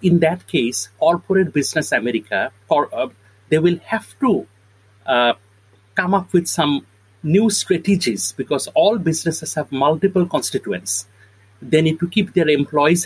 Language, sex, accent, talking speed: English, male, Indian, 145 wpm